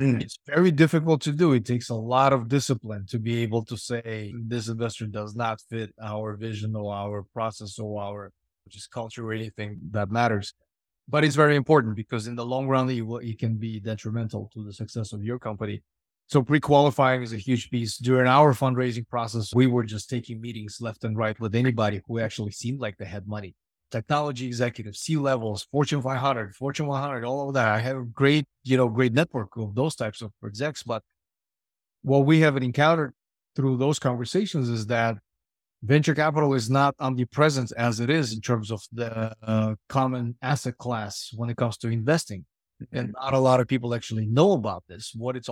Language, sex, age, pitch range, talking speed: English, male, 30-49, 110-135 Hz, 190 wpm